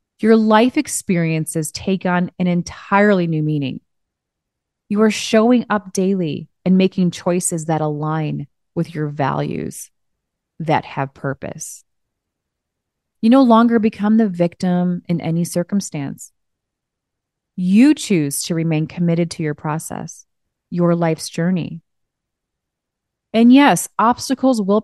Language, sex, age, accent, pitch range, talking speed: English, female, 30-49, American, 165-215 Hz, 120 wpm